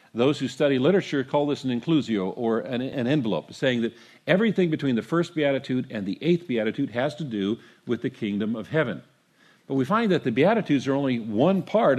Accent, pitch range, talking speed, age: American, 125-160 Hz, 205 wpm, 50-69